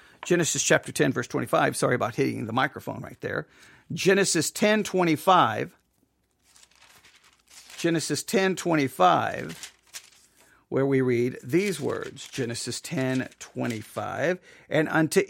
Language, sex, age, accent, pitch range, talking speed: English, male, 50-69, American, 160-215 Hz, 110 wpm